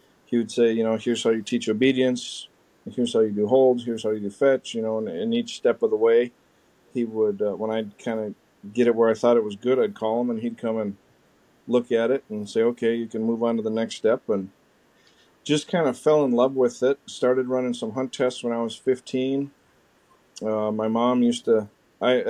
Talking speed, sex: 240 wpm, male